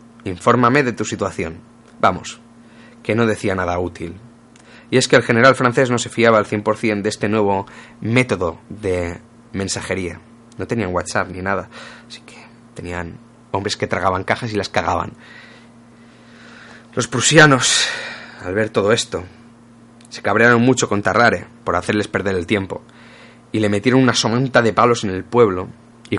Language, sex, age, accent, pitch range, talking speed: Spanish, male, 20-39, Spanish, 100-120 Hz, 160 wpm